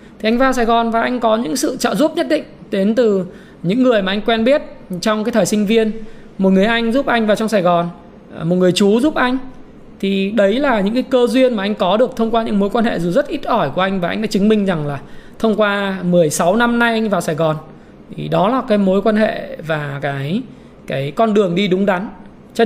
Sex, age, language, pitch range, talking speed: male, 20-39, Vietnamese, 185-230 Hz, 255 wpm